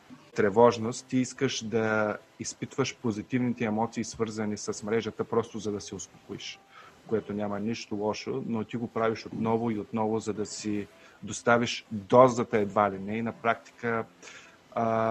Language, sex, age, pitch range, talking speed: Bulgarian, male, 30-49, 105-120 Hz, 150 wpm